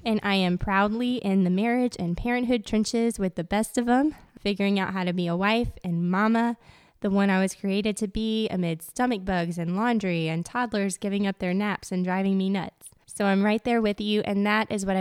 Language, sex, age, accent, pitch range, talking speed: English, female, 10-29, American, 185-225 Hz, 225 wpm